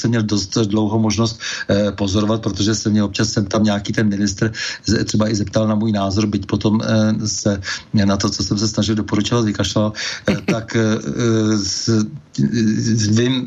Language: Slovak